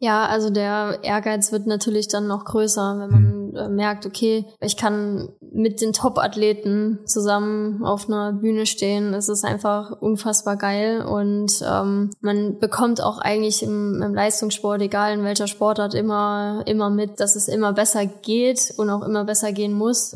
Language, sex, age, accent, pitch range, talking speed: German, female, 10-29, German, 200-215 Hz, 165 wpm